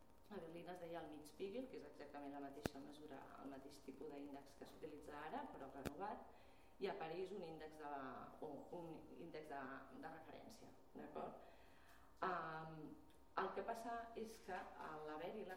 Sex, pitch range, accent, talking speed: female, 155-210 Hz, Spanish, 170 wpm